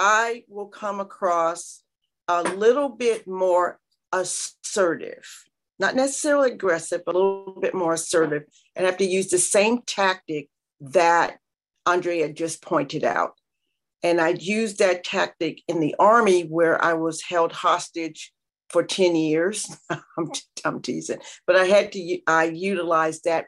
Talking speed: 145 wpm